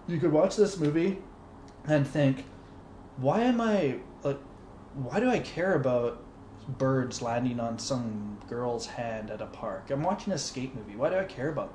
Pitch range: 110-140 Hz